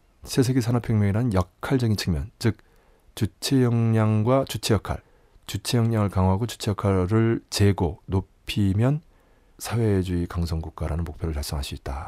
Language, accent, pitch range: Korean, native, 85-105 Hz